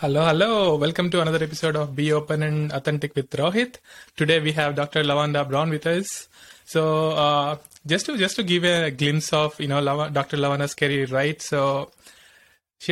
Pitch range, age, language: 145-165 Hz, 20-39, English